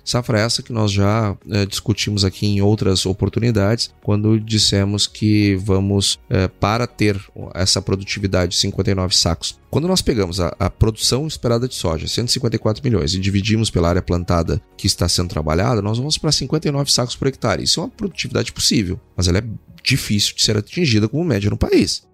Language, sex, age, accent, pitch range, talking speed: Portuguese, male, 30-49, Brazilian, 100-120 Hz, 175 wpm